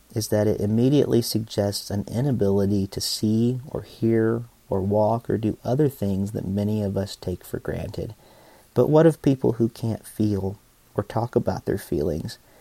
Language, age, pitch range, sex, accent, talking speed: English, 40-59, 100-120 Hz, male, American, 170 wpm